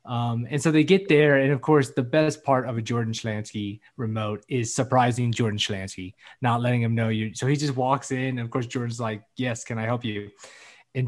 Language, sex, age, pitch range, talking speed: English, male, 20-39, 115-140 Hz, 225 wpm